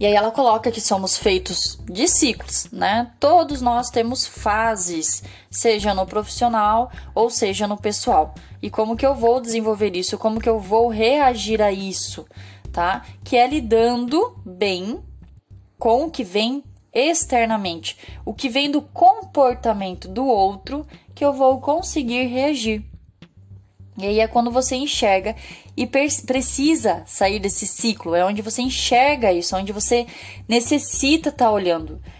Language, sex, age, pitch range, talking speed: Portuguese, female, 10-29, 190-250 Hz, 145 wpm